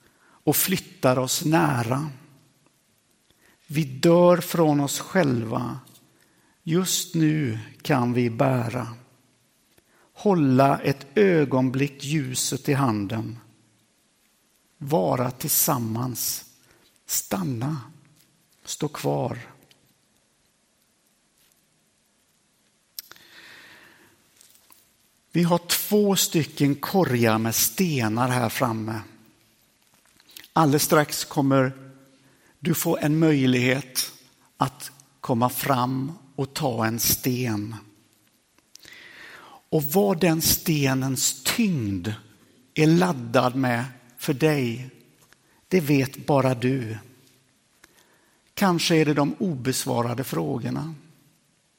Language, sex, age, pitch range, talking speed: Swedish, male, 60-79, 125-155 Hz, 80 wpm